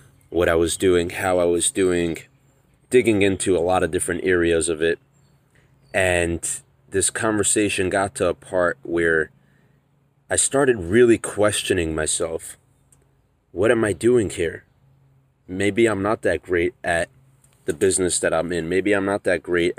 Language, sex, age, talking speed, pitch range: English, male, 30-49, 155 wpm, 85-135 Hz